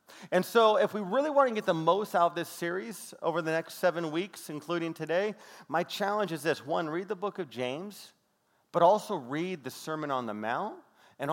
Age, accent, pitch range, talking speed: 40-59, American, 155-200 Hz, 210 wpm